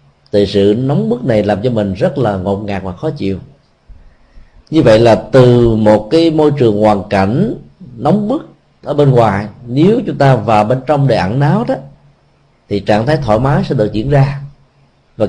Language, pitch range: Vietnamese, 105-140 Hz